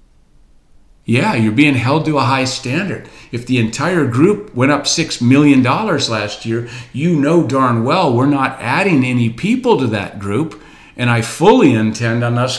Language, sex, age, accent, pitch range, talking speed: English, male, 50-69, American, 110-135 Hz, 170 wpm